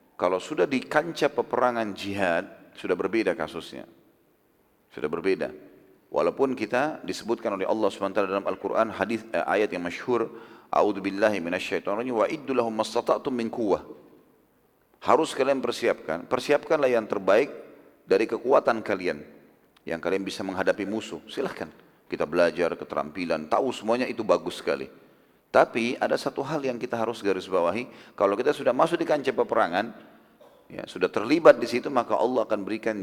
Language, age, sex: Indonesian, 40-59, male